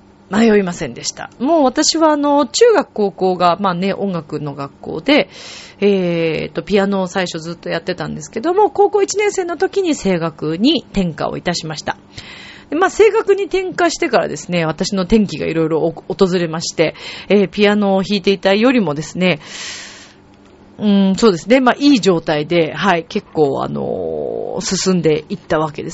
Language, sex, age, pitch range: Japanese, female, 30-49, 165-240 Hz